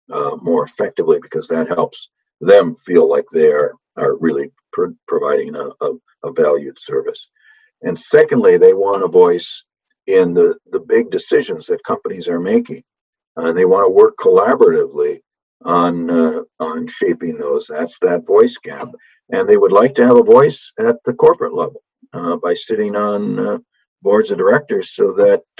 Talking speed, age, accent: 170 wpm, 50-69, American